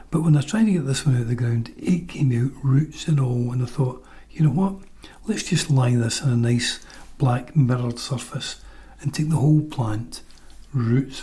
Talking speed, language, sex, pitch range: 215 wpm, English, male, 125-155 Hz